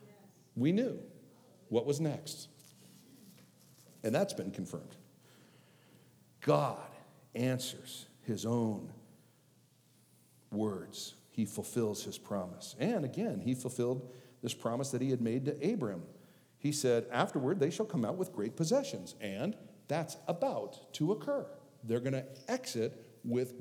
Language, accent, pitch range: English, American, 115-155 Hz